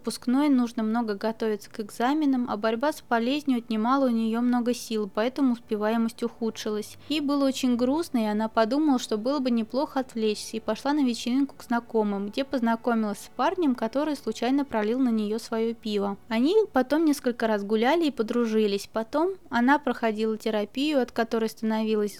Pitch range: 220-265 Hz